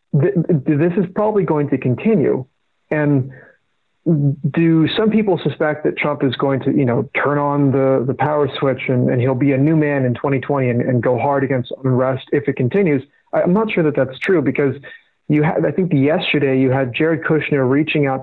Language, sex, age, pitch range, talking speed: English, male, 30-49, 130-155 Hz, 200 wpm